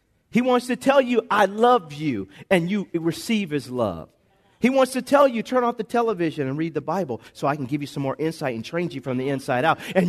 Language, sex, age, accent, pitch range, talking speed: English, male, 40-59, American, 195-265 Hz, 250 wpm